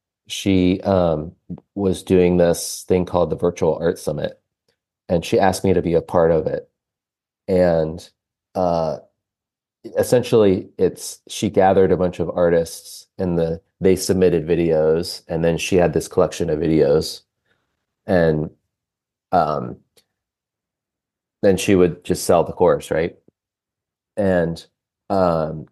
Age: 30-49